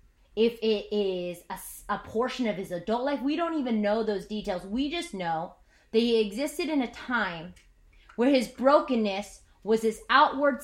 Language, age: English, 20-39